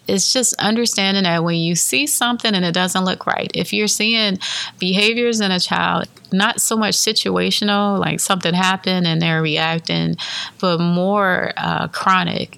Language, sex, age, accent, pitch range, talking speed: English, female, 30-49, American, 165-210 Hz, 160 wpm